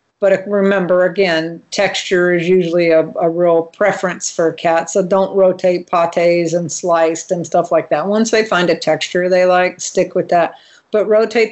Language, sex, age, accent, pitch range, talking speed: English, female, 50-69, American, 175-230 Hz, 175 wpm